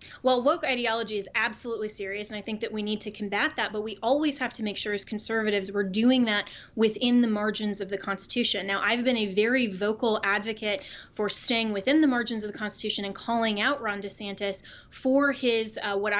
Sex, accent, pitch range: female, American, 205-240 Hz